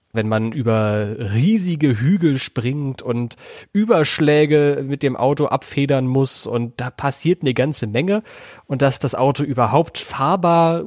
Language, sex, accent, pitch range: German, male, German, 125-170 Hz